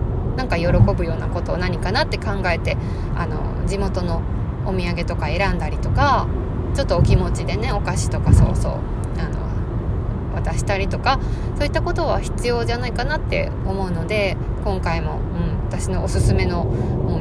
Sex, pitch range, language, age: female, 95-120 Hz, Japanese, 20-39